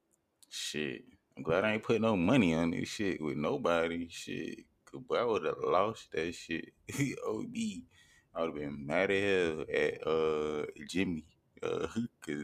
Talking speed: 155 wpm